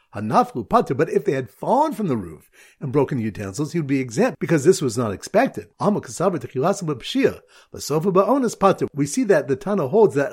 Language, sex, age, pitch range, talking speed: English, male, 50-69, 130-195 Hz, 165 wpm